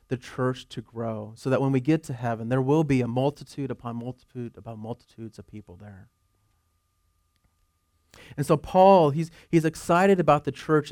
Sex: male